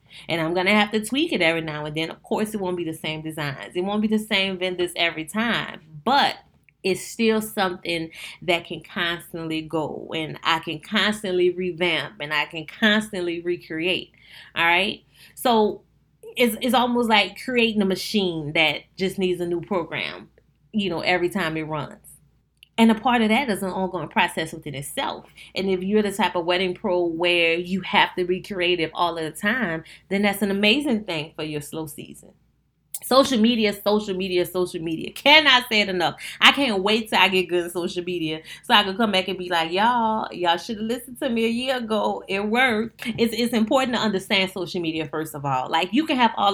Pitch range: 165-210 Hz